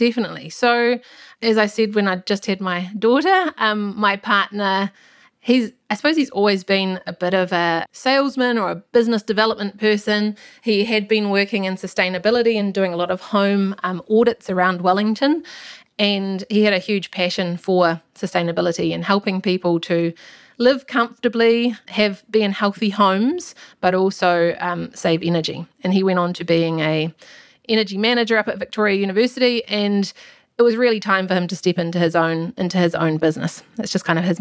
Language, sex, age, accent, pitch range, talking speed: English, female, 30-49, Australian, 180-220 Hz, 180 wpm